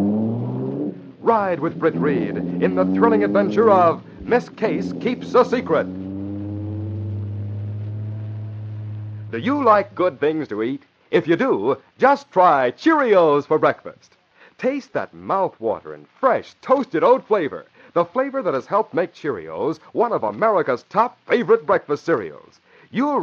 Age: 60-79